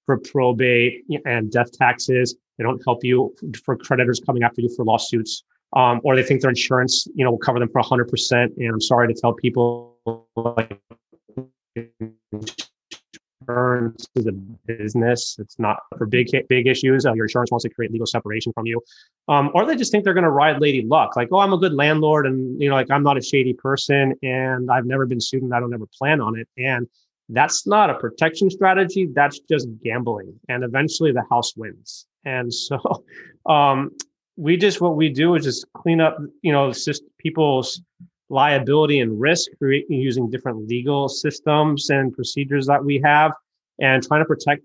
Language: English